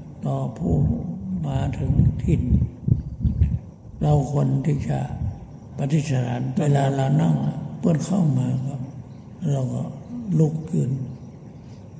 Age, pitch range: 60-79, 125-155 Hz